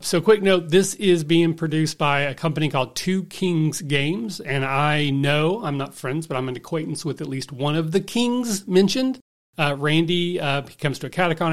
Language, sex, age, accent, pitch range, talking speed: English, male, 40-59, American, 130-165 Hz, 210 wpm